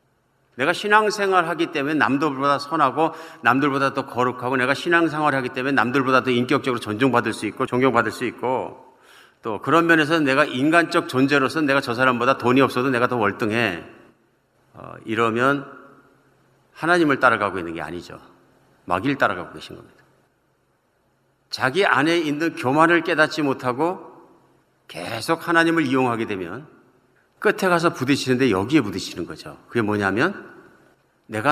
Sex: male